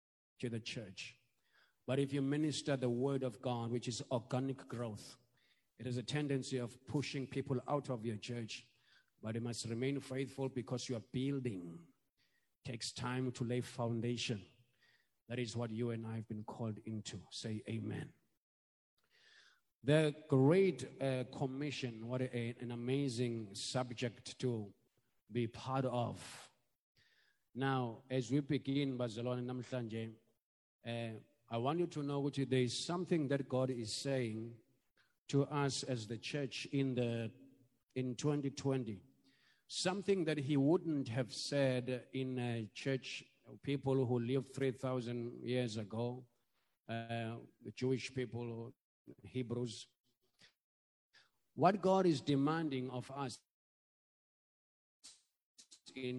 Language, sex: English, male